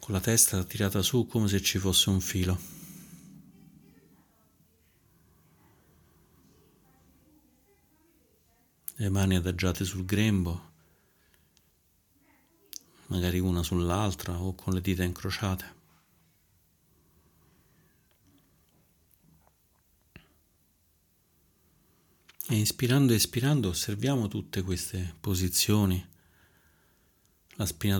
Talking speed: 75 wpm